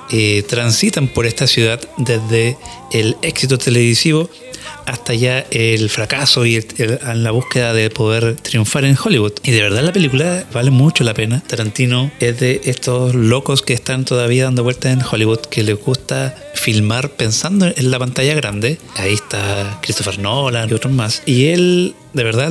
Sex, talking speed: male, 170 wpm